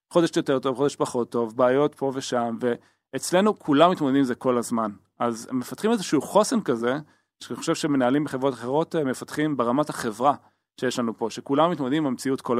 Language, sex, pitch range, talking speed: Hebrew, male, 120-155 Hz, 170 wpm